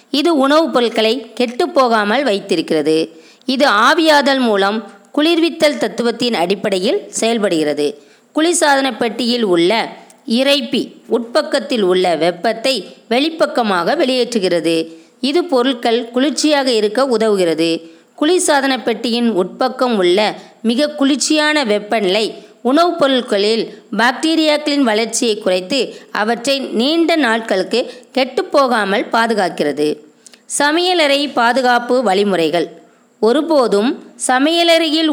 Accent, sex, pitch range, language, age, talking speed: native, female, 210-275 Hz, Tamil, 20-39, 80 wpm